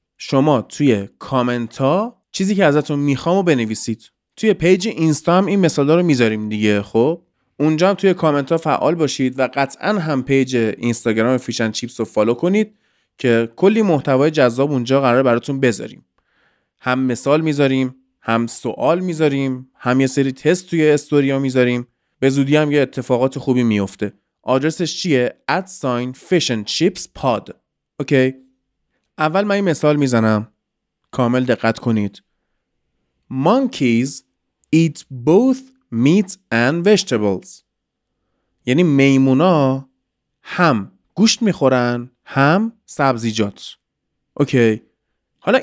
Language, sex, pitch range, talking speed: Persian, male, 120-165 Hz, 115 wpm